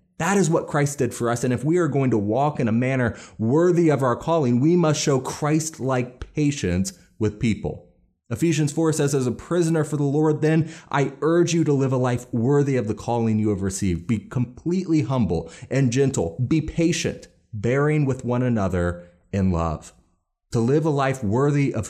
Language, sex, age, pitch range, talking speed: English, male, 30-49, 100-140 Hz, 195 wpm